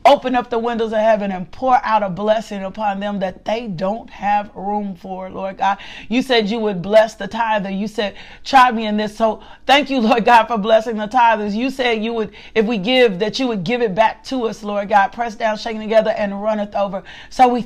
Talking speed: 235 wpm